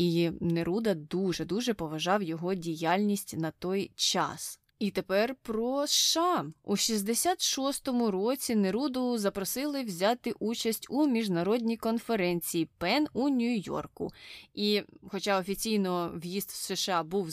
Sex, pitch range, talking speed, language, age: female, 180-235 Hz, 120 wpm, Ukrainian, 20-39